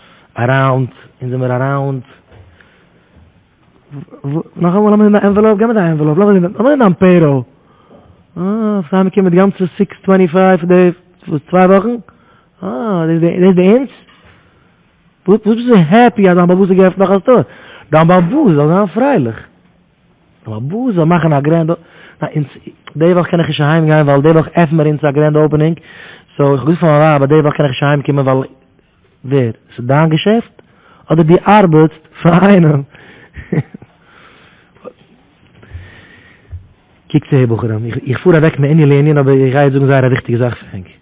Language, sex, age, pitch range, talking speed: English, male, 30-49, 130-175 Hz, 135 wpm